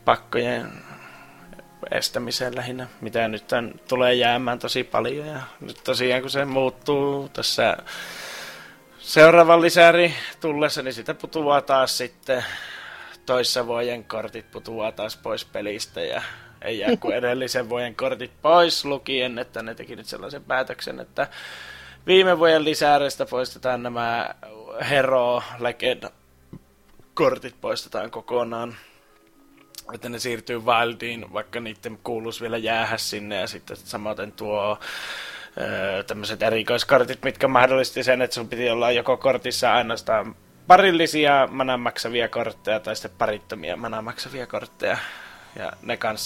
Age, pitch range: 20-39, 115-140 Hz